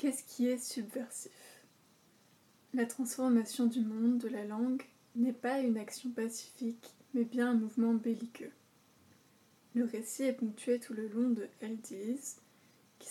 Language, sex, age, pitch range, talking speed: French, female, 20-39, 230-255 Hz, 145 wpm